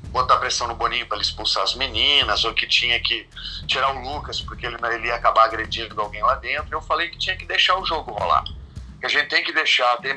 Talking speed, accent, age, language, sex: 235 wpm, Brazilian, 40-59, Portuguese, male